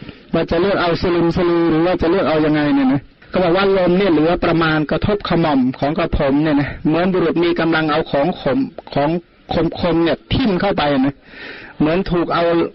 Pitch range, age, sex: 150-180 Hz, 30-49, male